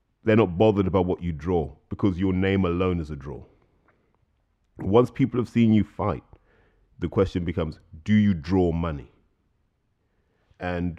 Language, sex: English, male